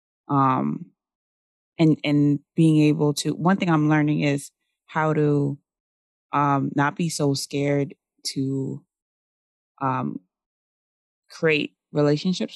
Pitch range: 130-150 Hz